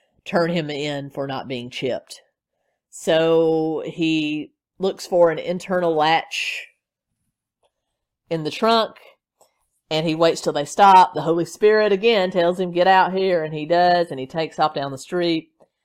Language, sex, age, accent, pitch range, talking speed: English, female, 40-59, American, 145-180 Hz, 160 wpm